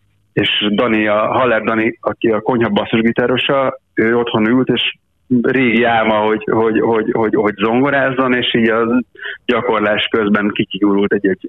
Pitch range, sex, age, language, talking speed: 105-125 Hz, male, 30-49, Hungarian, 135 wpm